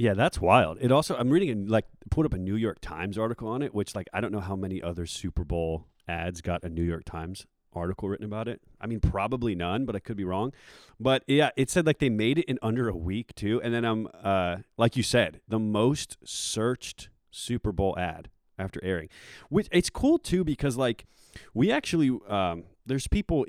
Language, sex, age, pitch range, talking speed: English, male, 30-49, 95-120 Hz, 220 wpm